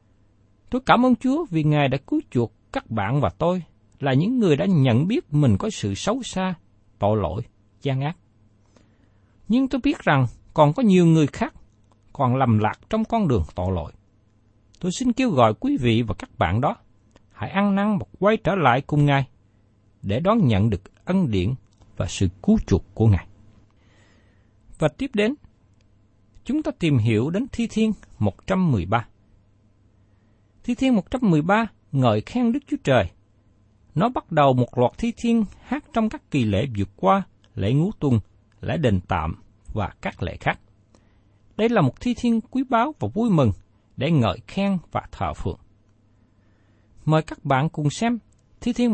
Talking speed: 175 wpm